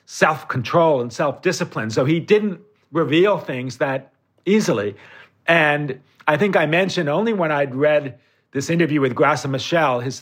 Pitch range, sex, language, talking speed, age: 140-190 Hz, male, English, 145 wpm, 50-69